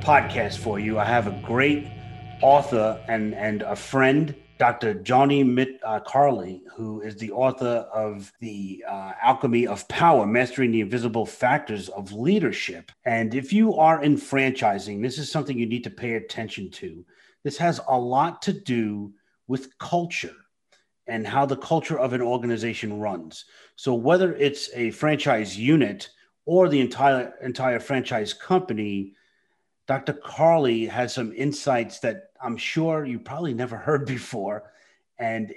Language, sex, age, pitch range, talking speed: English, male, 30-49, 110-140 Hz, 150 wpm